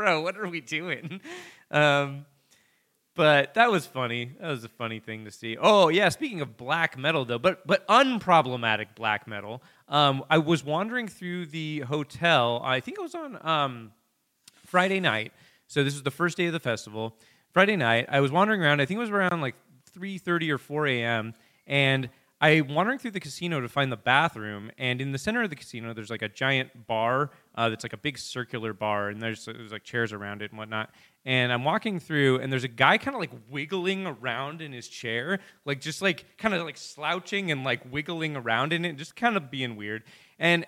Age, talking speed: 20-39, 210 wpm